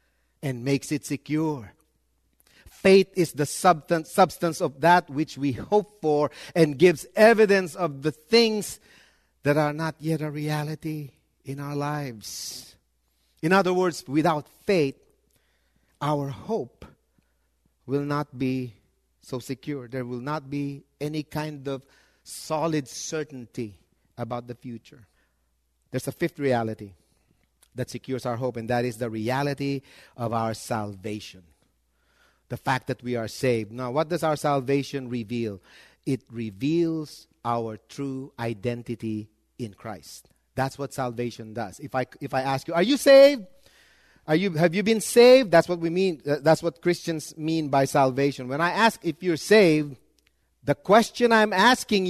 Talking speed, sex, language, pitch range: 145 wpm, male, English, 120-160 Hz